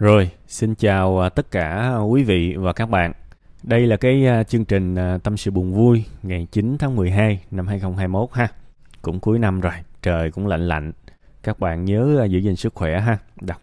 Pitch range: 90-110 Hz